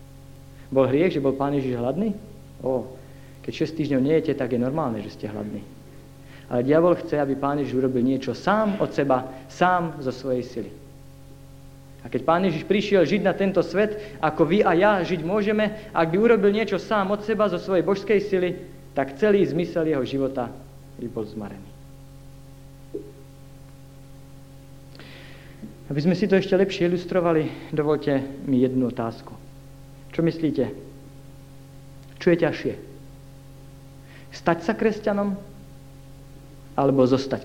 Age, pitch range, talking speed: 50-69, 135-170 Hz, 140 wpm